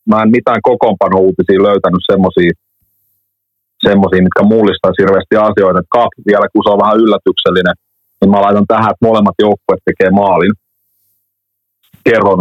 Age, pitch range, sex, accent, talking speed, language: 30-49, 95-110 Hz, male, native, 130 wpm, Finnish